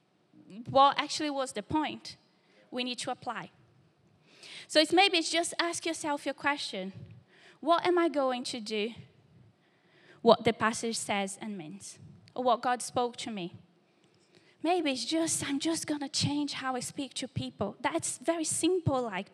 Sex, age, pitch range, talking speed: female, 20-39, 215-325 Hz, 170 wpm